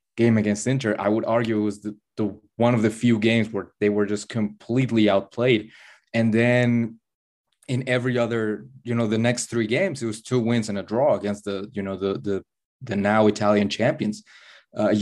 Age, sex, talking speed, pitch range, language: 20-39, male, 200 wpm, 105-120 Hz, English